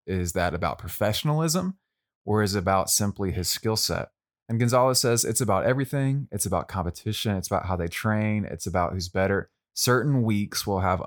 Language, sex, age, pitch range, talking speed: English, male, 20-39, 95-115 Hz, 185 wpm